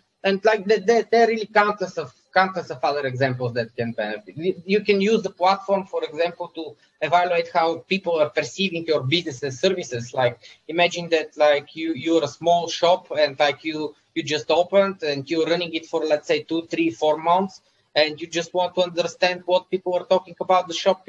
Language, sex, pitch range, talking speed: English, male, 150-185 Hz, 195 wpm